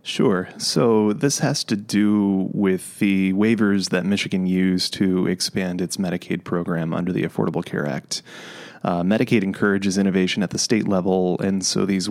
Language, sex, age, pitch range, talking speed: English, male, 20-39, 90-100 Hz, 165 wpm